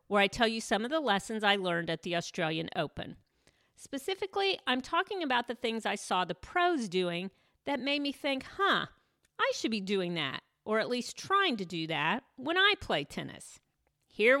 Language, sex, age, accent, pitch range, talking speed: English, female, 40-59, American, 185-250 Hz, 195 wpm